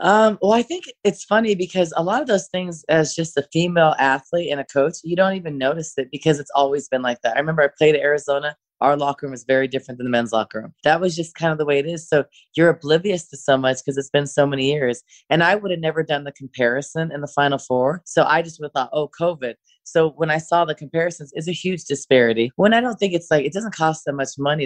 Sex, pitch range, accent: female, 140-165 Hz, American